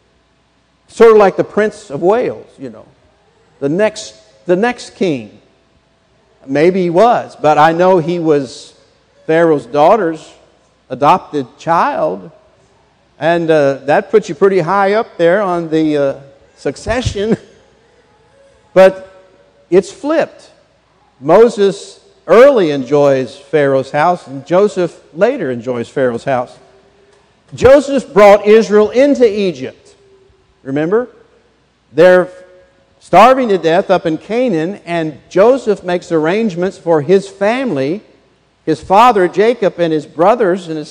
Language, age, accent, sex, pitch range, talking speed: English, 60-79, American, male, 160-225 Hz, 120 wpm